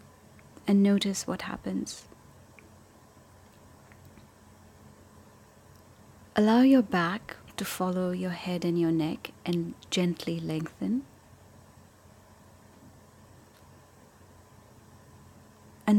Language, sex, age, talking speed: English, female, 30-49, 70 wpm